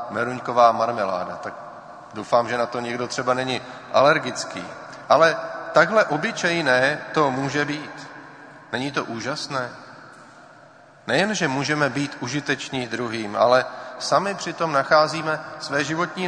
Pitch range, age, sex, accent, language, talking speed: 135-165 Hz, 40-59, male, native, Czech, 120 wpm